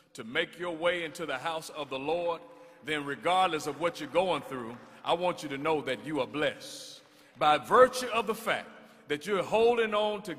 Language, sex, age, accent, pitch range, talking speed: English, male, 50-69, American, 140-185 Hz, 210 wpm